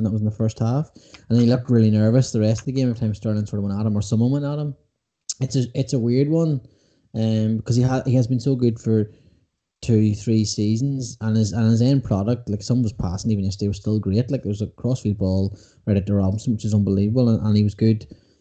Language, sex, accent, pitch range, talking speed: English, male, Irish, 110-135 Hz, 265 wpm